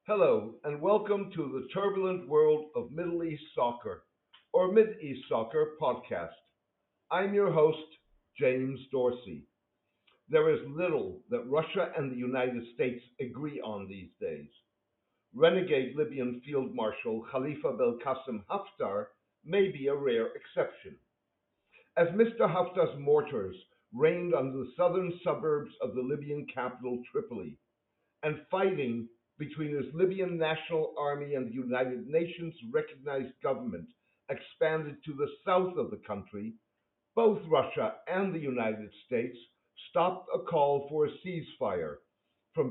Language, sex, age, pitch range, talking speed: English, male, 60-79, 130-190 Hz, 130 wpm